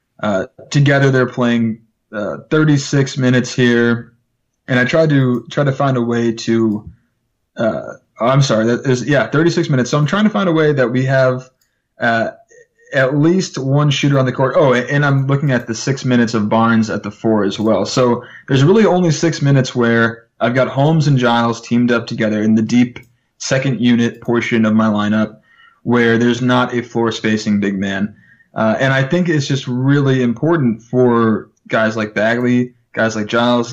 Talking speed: 190 wpm